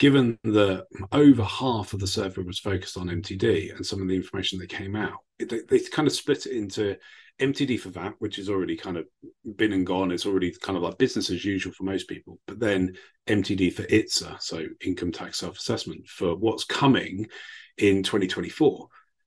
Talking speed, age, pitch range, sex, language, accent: 195 wpm, 40-59, 95-135 Hz, male, English, British